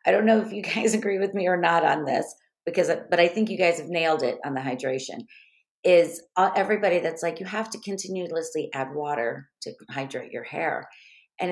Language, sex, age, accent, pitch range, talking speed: English, female, 40-59, American, 155-215 Hz, 210 wpm